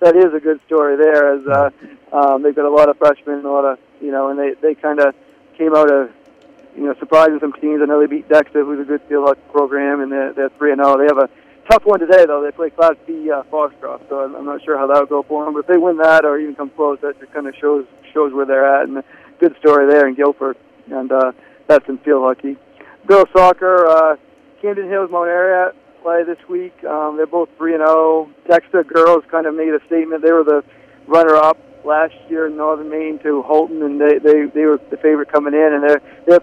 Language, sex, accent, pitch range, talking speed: English, male, American, 140-160 Hz, 250 wpm